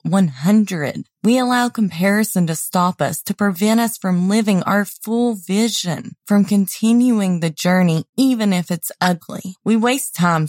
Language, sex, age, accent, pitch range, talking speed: English, female, 20-39, American, 190-240 Hz, 150 wpm